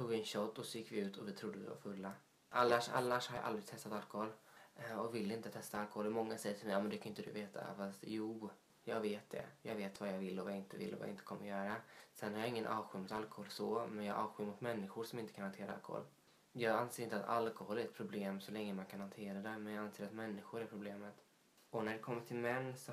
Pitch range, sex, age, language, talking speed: 100-115 Hz, male, 20-39, Swedish, 270 wpm